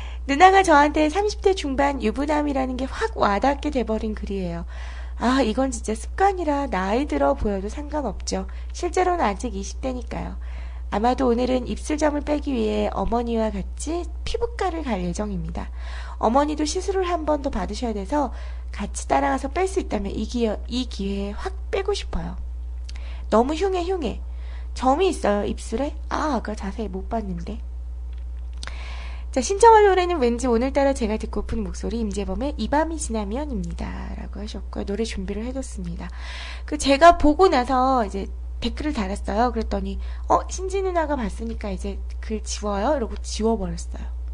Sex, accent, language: female, native, Korean